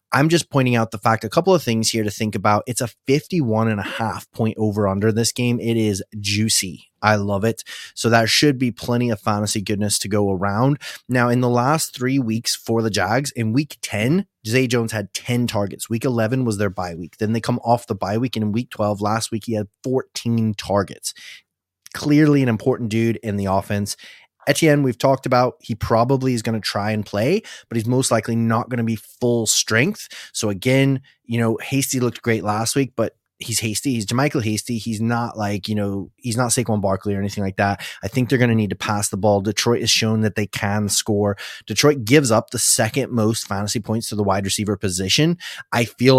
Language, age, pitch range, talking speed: English, 20-39, 105-125 Hz, 220 wpm